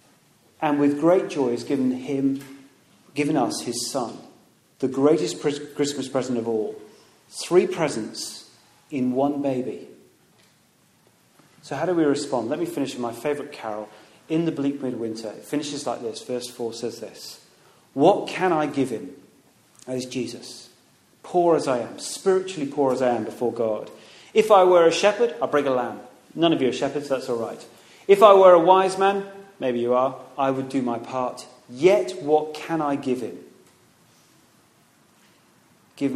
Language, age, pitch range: English, 30-49, 125-160 Hz